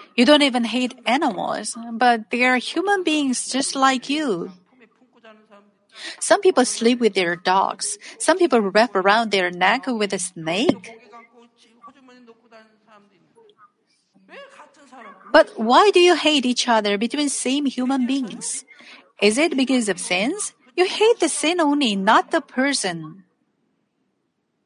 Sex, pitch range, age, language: female, 220-290 Hz, 40-59, Korean